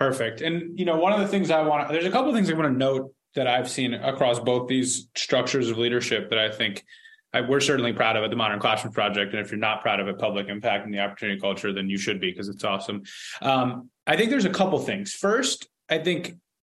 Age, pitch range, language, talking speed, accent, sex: 20-39, 115-150 Hz, English, 265 wpm, American, male